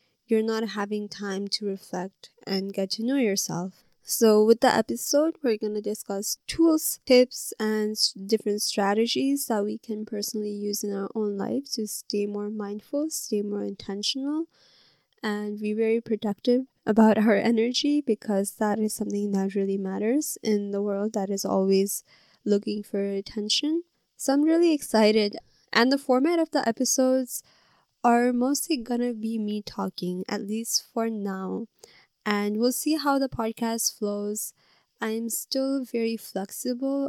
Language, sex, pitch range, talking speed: English, female, 205-245 Hz, 150 wpm